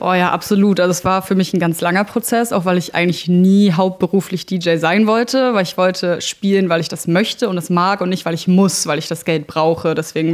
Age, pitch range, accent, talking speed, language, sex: 20-39, 170-195 Hz, German, 250 wpm, German, female